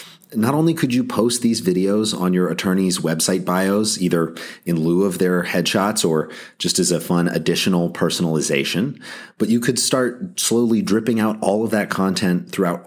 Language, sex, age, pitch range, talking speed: English, male, 30-49, 90-120 Hz, 175 wpm